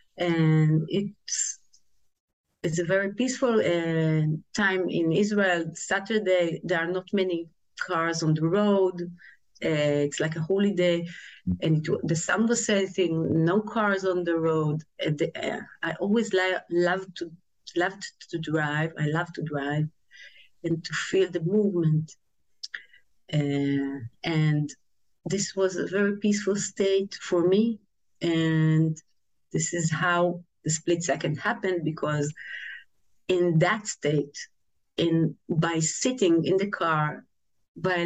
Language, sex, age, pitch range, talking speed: English, female, 30-49, 160-195 Hz, 130 wpm